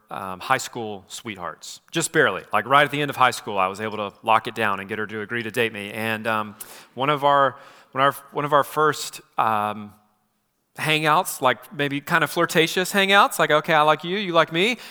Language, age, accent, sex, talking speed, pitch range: English, 30-49, American, male, 215 wpm, 110-145 Hz